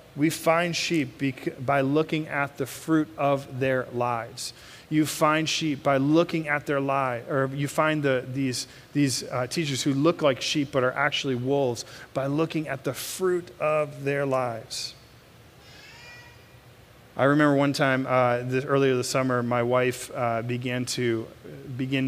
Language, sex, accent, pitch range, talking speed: English, male, American, 125-155 Hz, 160 wpm